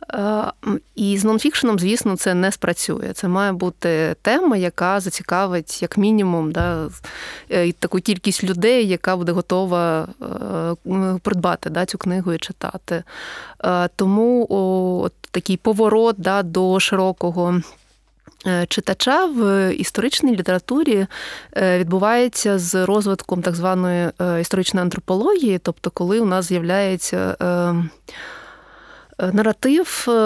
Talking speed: 105 wpm